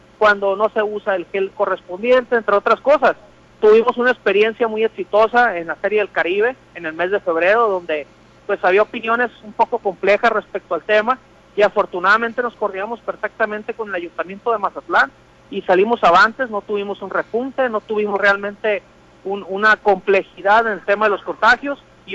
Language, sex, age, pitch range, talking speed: Spanish, male, 40-59, 195-230 Hz, 175 wpm